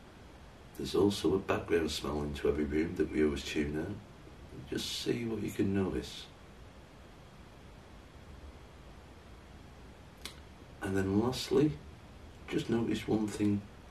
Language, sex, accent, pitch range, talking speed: English, male, British, 75-100 Hz, 110 wpm